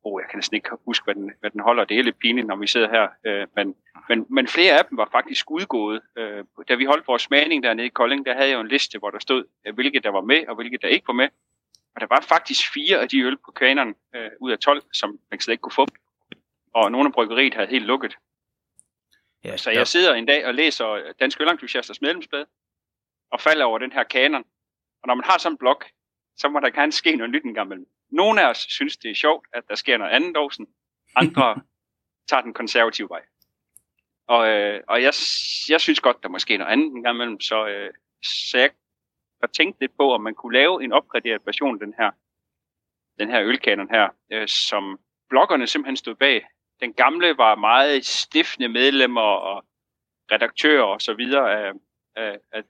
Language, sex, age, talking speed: Danish, male, 30-49, 210 wpm